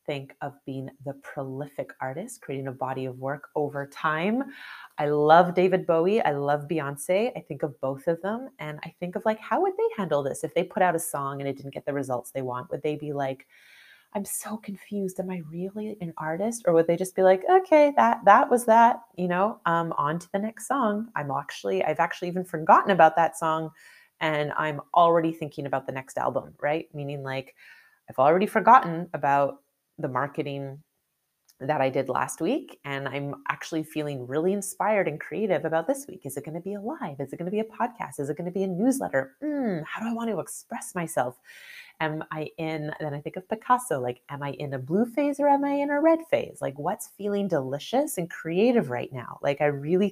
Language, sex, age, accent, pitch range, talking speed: English, female, 30-49, American, 140-200 Hz, 220 wpm